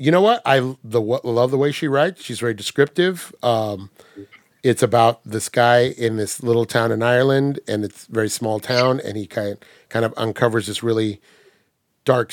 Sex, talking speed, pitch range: male, 200 wpm, 115-150 Hz